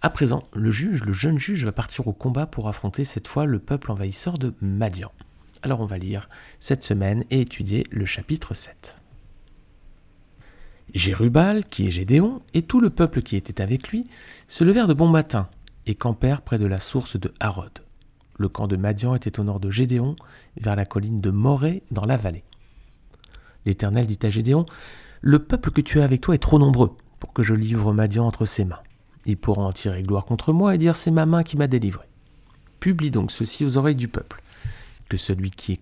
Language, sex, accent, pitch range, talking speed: French, male, French, 100-140 Hz, 210 wpm